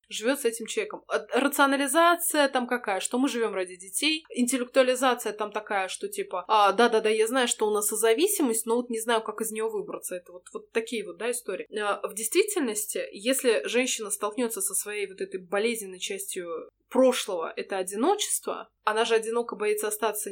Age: 20-39